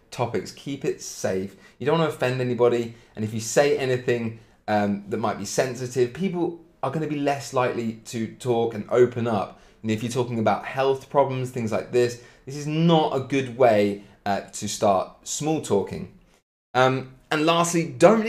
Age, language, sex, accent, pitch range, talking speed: 30-49, English, male, British, 120-160 Hz, 185 wpm